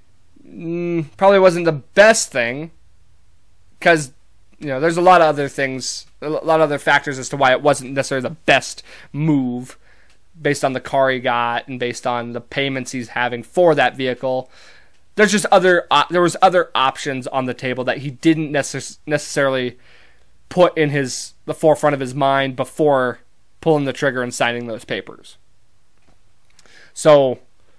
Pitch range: 120-160 Hz